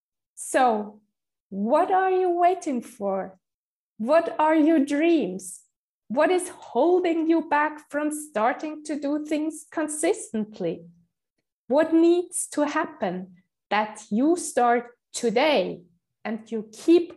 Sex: female